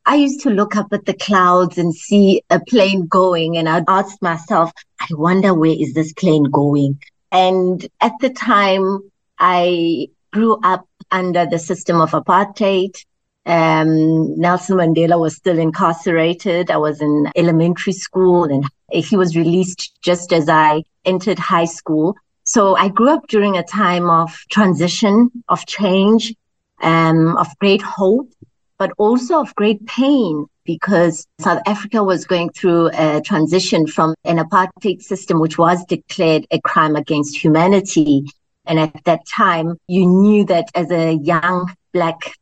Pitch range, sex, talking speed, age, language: 165-195 Hz, female, 150 wpm, 30-49, English